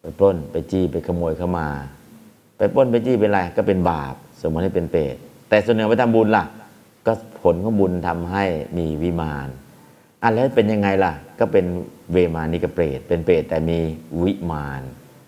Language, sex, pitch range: Thai, male, 80-100 Hz